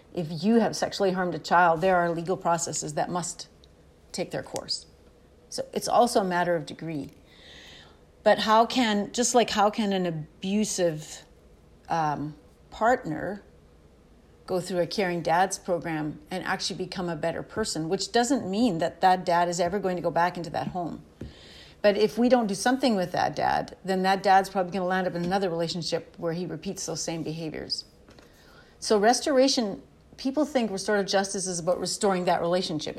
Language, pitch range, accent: English, 165-195 Hz, American